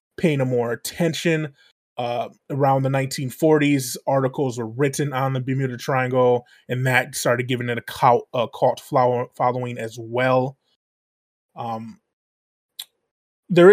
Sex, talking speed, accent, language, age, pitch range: male, 120 wpm, American, English, 20-39, 125-145 Hz